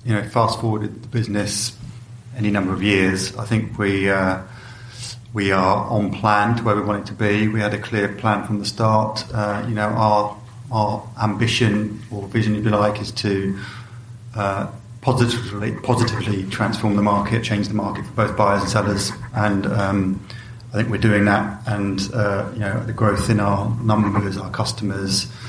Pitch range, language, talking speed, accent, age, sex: 100-115 Hz, English, 180 wpm, British, 30-49, male